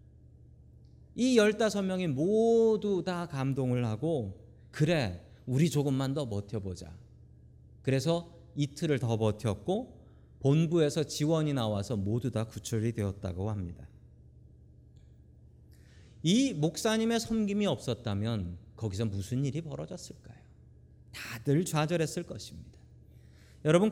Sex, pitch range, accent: male, 115-170 Hz, native